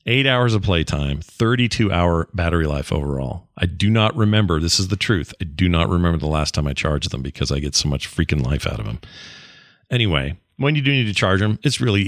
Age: 40-59